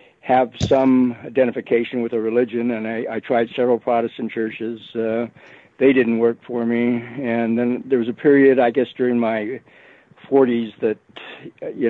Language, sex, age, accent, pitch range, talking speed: English, male, 60-79, American, 110-120 Hz, 160 wpm